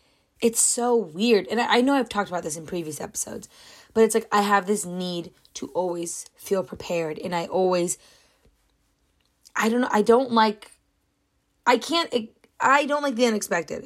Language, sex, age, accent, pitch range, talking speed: English, female, 20-39, American, 165-215 Hz, 175 wpm